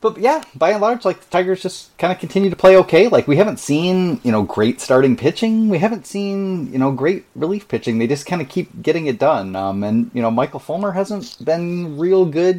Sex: male